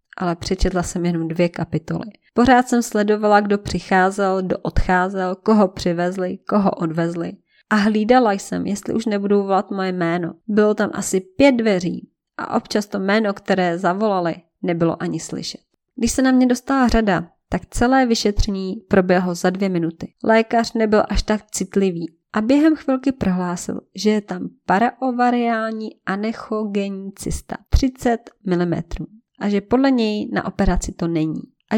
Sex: female